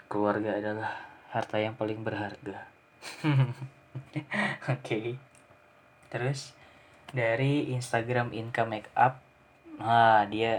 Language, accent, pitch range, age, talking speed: Indonesian, native, 110-130 Hz, 20-39, 90 wpm